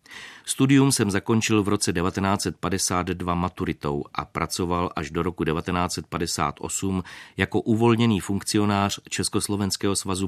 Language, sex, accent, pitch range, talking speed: Czech, male, native, 90-105 Hz, 105 wpm